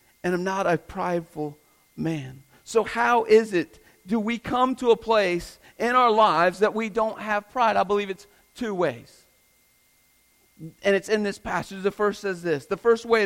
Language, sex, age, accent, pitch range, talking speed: English, male, 40-59, American, 205-255 Hz, 185 wpm